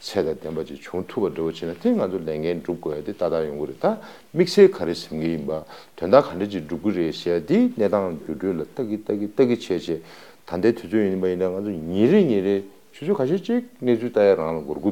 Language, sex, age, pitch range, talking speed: English, male, 50-69, 80-100 Hz, 65 wpm